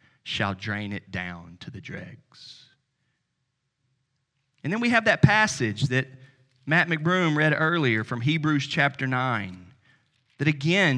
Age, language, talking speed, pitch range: 30-49, English, 130 wpm, 125-150 Hz